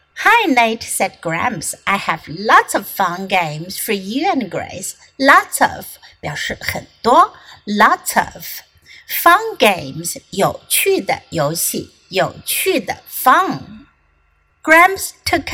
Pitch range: 210-350 Hz